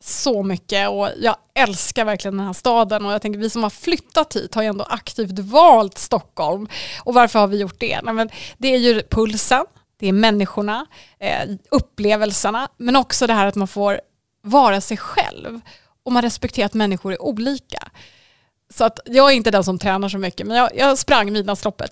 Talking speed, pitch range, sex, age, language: 200 wpm, 205-245 Hz, female, 20-39, Swedish